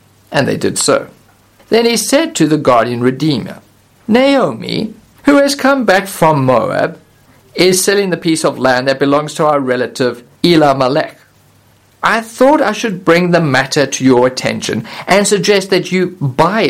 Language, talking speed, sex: English, 160 wpm, male